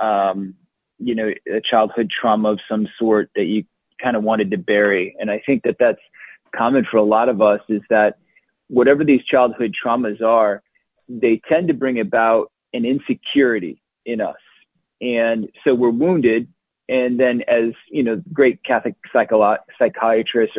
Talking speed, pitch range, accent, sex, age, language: 160 wpm, 105-125 Hz, American, male, 30-49, English